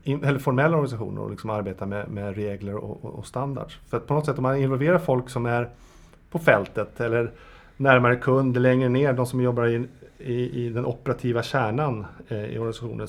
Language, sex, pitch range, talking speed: Swedish, male, 115-140 Hz, 195 wpm